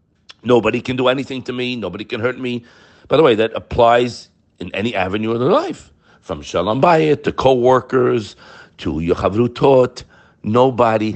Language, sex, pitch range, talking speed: English, male, 110-145 Hz, 160 wpm